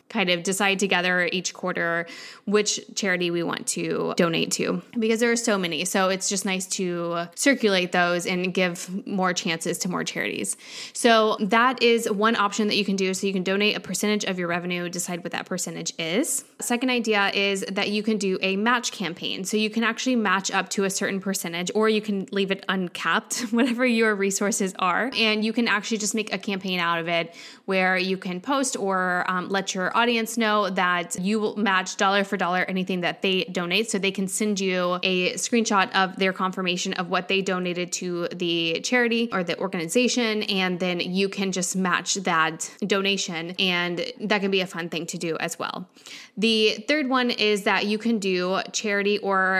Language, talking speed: English, 200 wpm